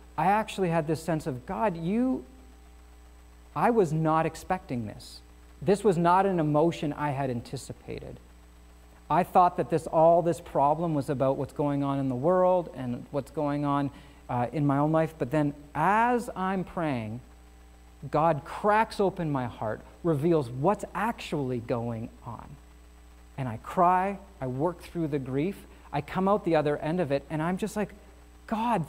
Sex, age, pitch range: male, 40-59, 125-185 Hz